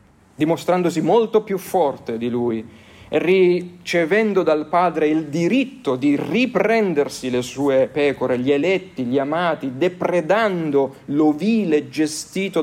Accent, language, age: native, Italian, 40-59